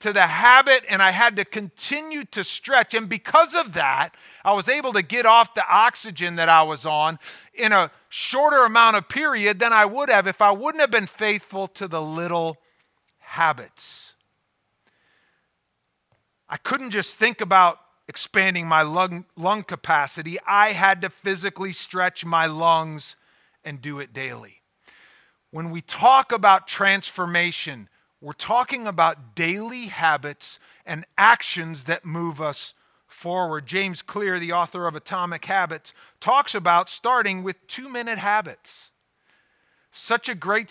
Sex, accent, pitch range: male, American, 170-225 Hz